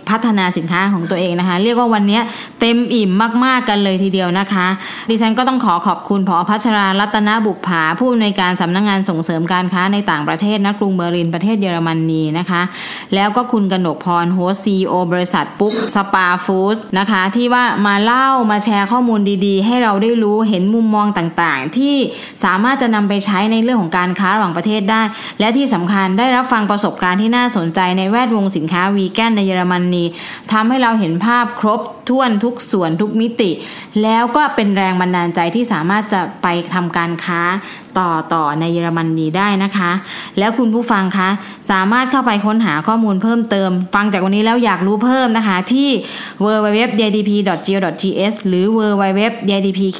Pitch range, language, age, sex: 180-220 Hz, Thai, 20-39, female